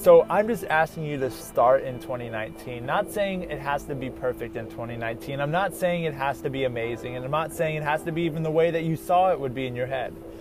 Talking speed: 265 wpm